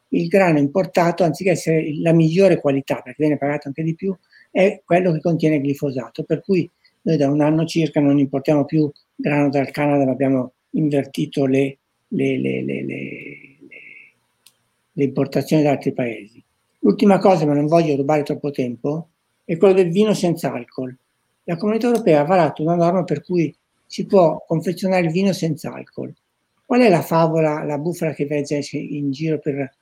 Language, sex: Italian, male